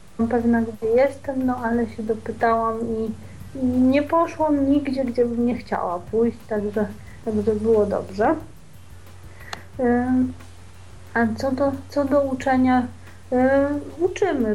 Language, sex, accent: Polish, female, native